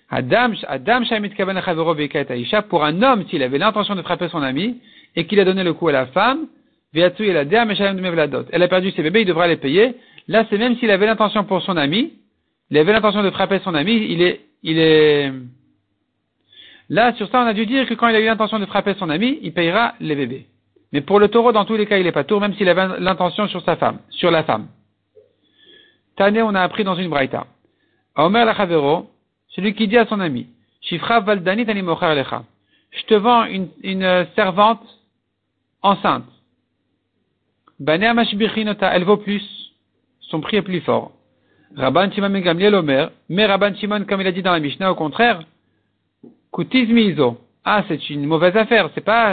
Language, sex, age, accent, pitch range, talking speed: French, male, 50-69, French, 160-220 Hz, 180 wpm